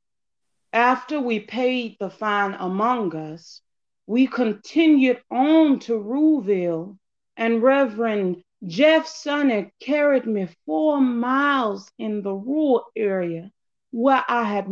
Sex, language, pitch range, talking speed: female, English, 200-270 Hz, 110 wpm